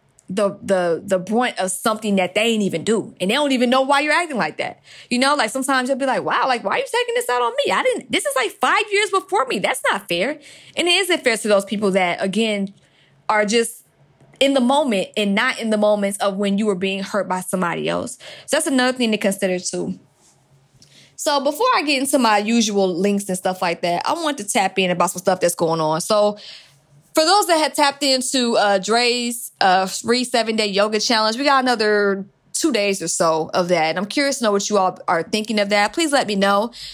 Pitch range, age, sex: 185-235 Hz, 20-39, female